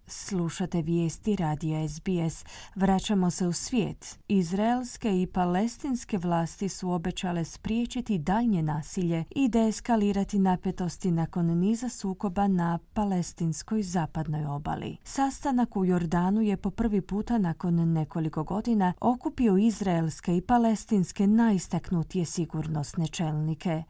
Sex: female